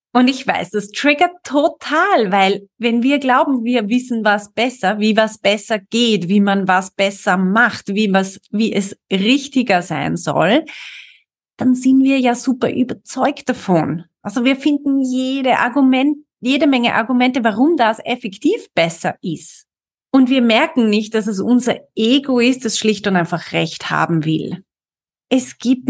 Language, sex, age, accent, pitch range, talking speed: German, female, 30-49, German, 195-255 Hz, 160 wpm